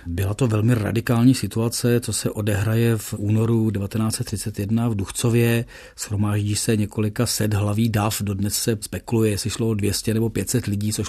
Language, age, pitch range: Czech, 40-59, 105-115 Hz